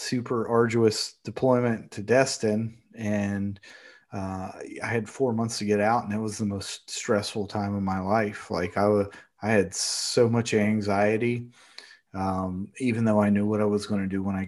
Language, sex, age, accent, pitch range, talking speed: English, male, 30-49, American, 100-115 Hz, 185 wpm